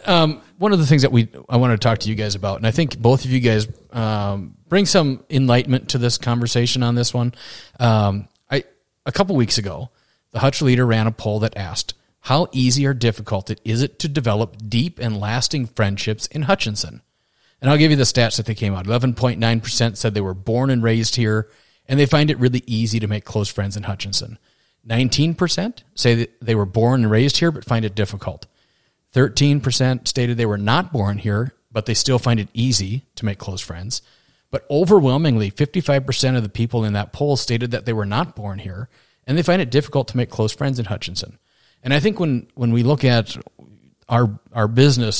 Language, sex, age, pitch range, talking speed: English, male, 30-49, 105-130 Hz, 210 wpm